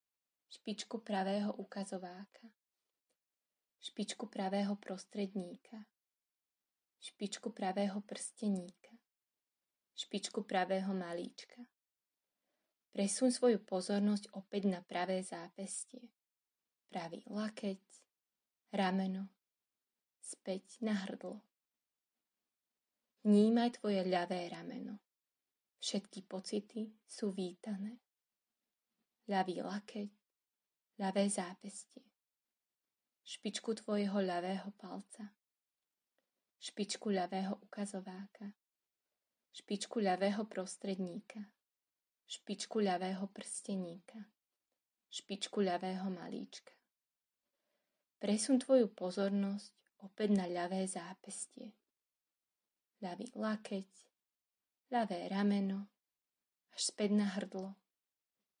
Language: Slovak